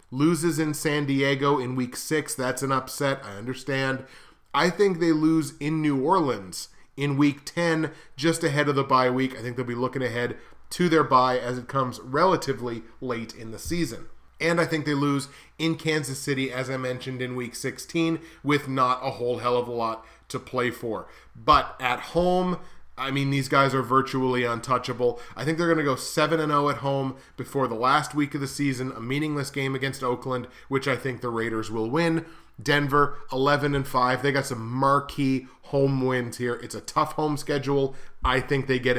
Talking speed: 195 wpm